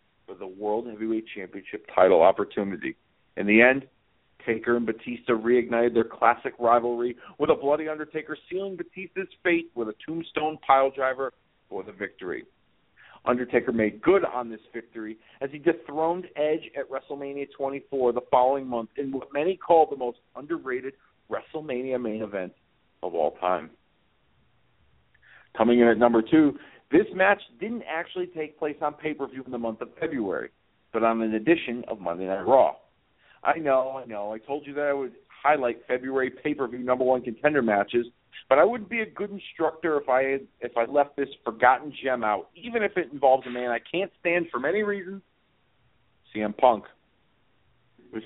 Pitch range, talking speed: 120-155 Hz, 170 wpm